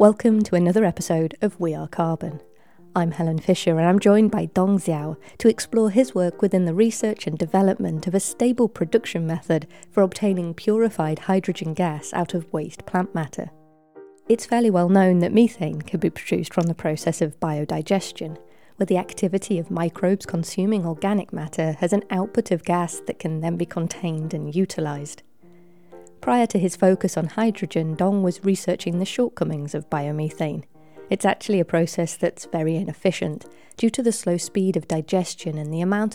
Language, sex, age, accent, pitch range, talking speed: English, female, 30-49, British, 160-200 Hz, 175 wpm